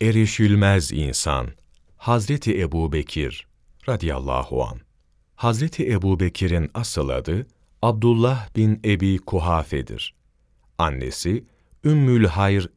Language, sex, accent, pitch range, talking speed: Turkish, male, native, 75-110 Hz, 80 wpm